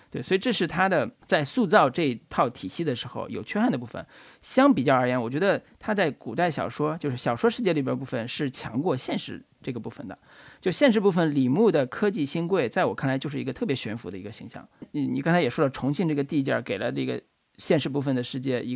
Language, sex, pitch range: Chinese, male, 130-175 Hz